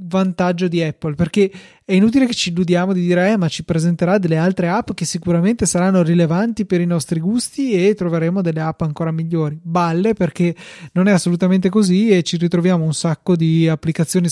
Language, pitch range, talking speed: Italian, 165-190 Hz, 190 wpm